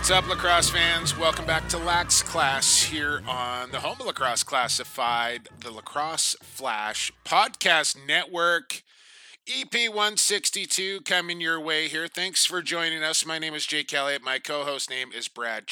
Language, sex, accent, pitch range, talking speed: English, male, American, 145-195 Hz, 155 wpm